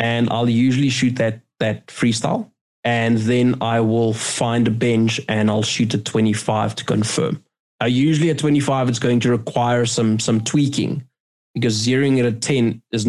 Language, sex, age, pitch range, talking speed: English, male, 20-39, 115-130 Hz, 175 wpm